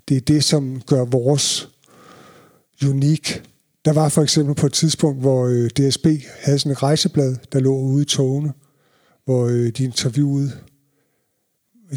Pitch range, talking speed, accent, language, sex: 125-145 Hz, 140 wpm, native, Danish, male